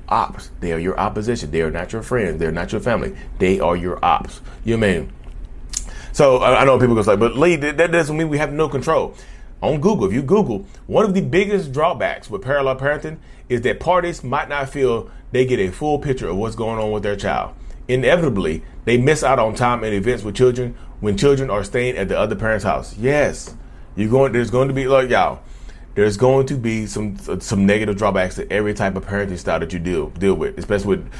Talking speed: 225 wpm